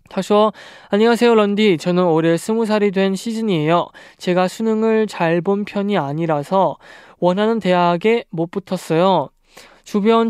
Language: Korean